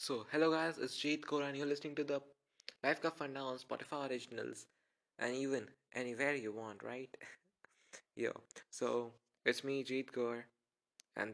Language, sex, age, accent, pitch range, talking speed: Hindi, male, 20-39, native, 110-140 Hz, 160 wpm